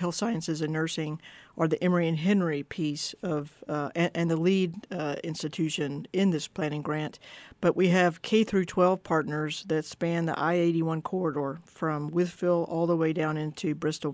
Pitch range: 155-185 Hz